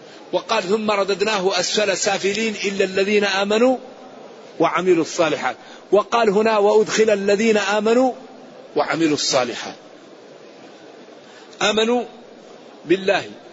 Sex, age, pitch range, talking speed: male, 50-69, 165-205 Hz, 85 wpm